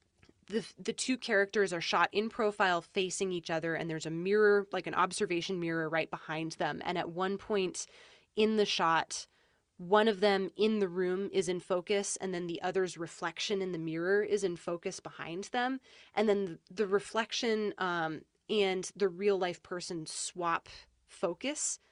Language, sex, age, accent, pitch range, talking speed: English, female, 20-39, American, 170-205 Hz, 175 wpm